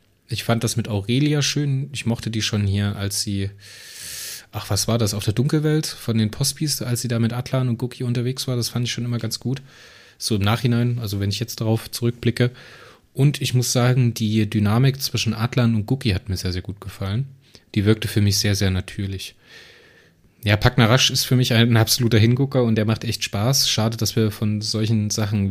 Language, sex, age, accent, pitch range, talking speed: German, male, 20-39, German, 105-125 Hz, 210 wpm